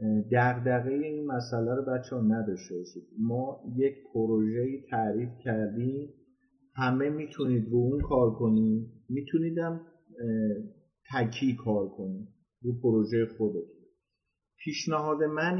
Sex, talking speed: male, 110 wpm